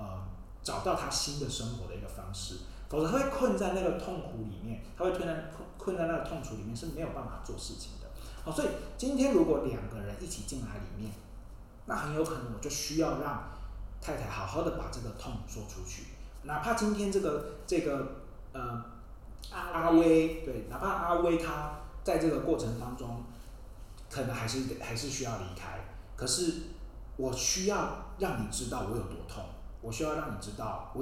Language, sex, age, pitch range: Chinese, male, 30-49, 100-150 Hz